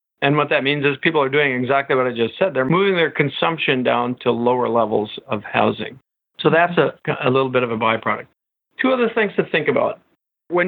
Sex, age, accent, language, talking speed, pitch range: male, 50-69, American, English, 220 wpm, 125-160 Hz